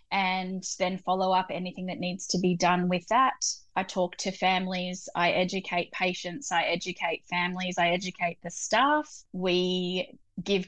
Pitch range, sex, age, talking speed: 180-195 Hz, female, 20-39, 155 wpm